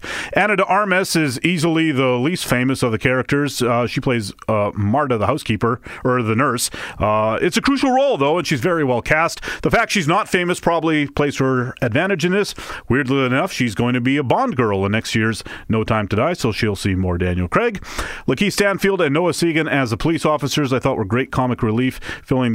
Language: English